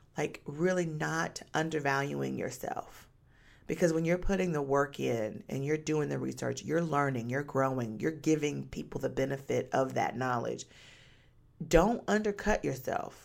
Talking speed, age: 145 wpm, 40-59